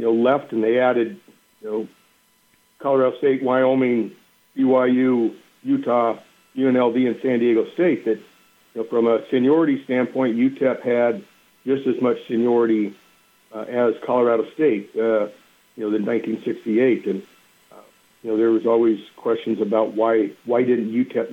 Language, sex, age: English, male, 60-79